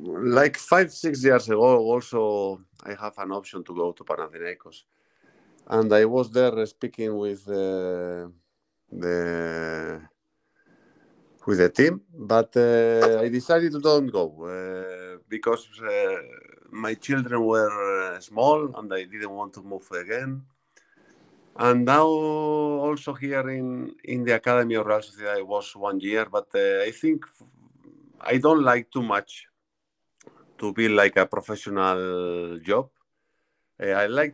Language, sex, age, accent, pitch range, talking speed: Greek, male, 50-69, Spanish, 100-125 Hz, 140 wpm